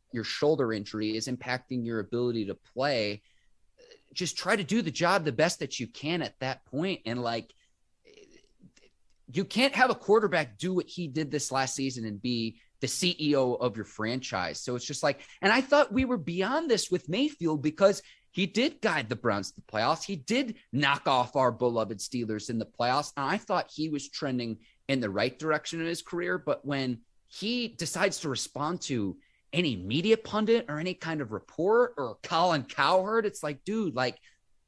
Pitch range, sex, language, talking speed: 120-175 Hz, male, English, 190 wpm